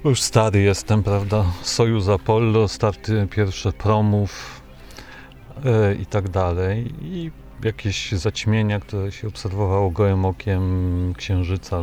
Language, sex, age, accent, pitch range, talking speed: Polish, male, 40-59, native, 95-115 Hz, 105 wpm